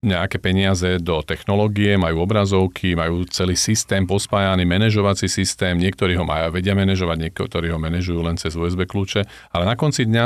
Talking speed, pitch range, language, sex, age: 165 wpm, 90-110 Hz, Slovak, male, 40-59